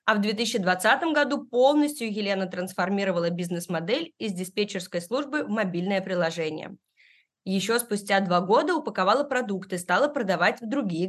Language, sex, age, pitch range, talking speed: Russian, female, 20-39, 185-240 Hz, 130 wpm